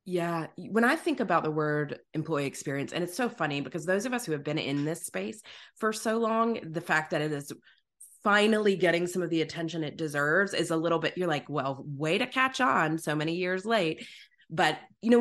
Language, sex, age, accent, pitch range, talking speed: English, female, 20-39, American, 160-235 Hz, 225 wpm